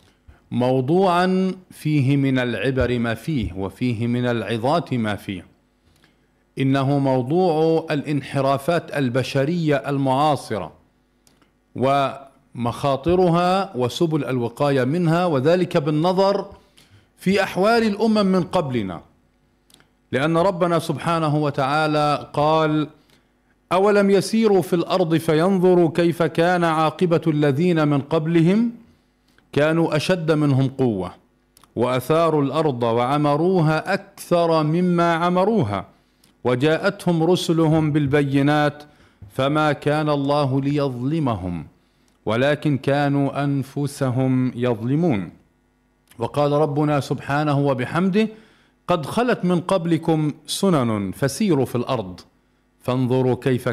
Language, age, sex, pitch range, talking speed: Arabic, 50-69, male, 125-170 Hz, 85 wpm